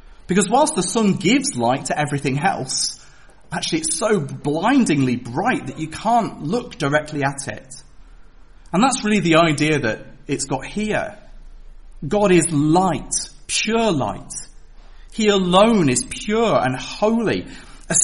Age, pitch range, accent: 40-59, 130-200 Hz, British